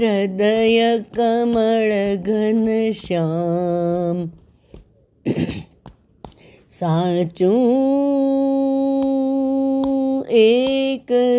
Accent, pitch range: native, 245-300 Hz